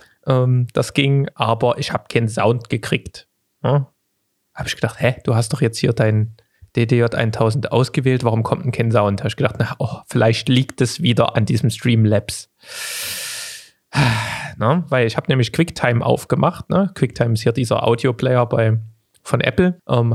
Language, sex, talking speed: German, male, 165 wpm